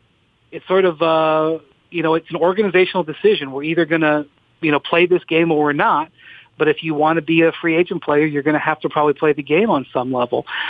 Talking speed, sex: 245 wpm, male